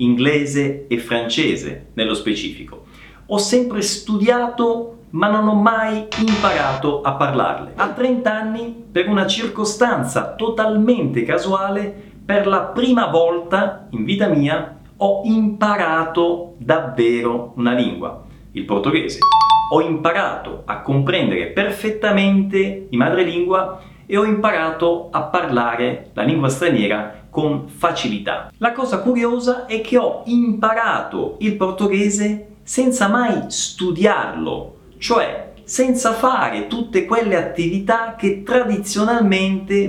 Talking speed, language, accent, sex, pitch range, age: 110 wpm, Italian, native, male, 150-220 Hz, 30-49